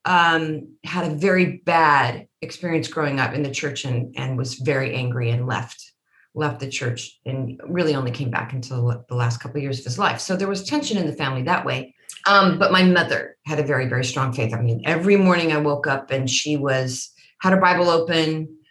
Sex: female